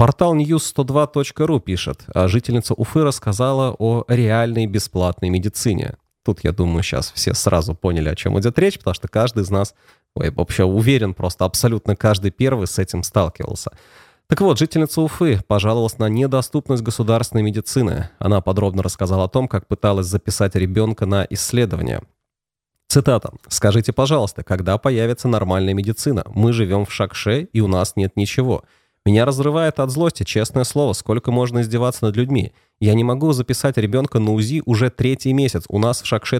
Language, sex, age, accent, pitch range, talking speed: Russian, male, 30-49, native, 100-130 Hz, 160 wpm